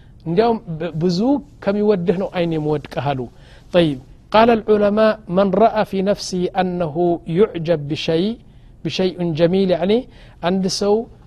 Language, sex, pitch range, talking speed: Amharic, male, 155-205 Hz, 115 wpm